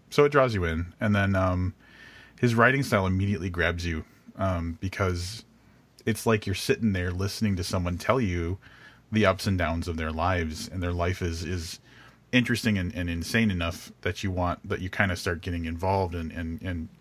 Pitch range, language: 90-110 Hz, English